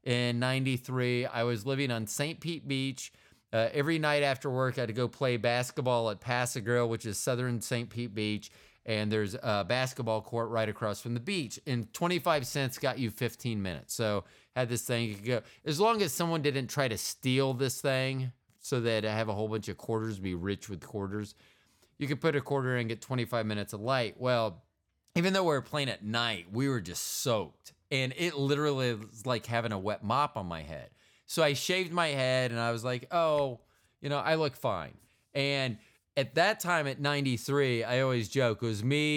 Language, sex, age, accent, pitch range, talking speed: English, male, 30-49, American, 110-135 Hz, 210 wpm